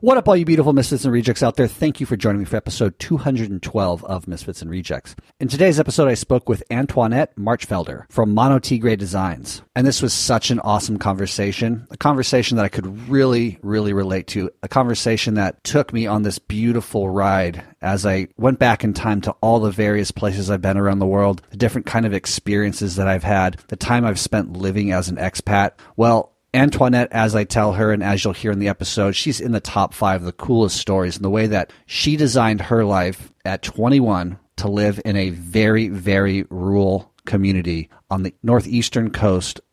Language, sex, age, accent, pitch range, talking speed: English, male, 40-59, American, 95-120 Hz, 205 wpm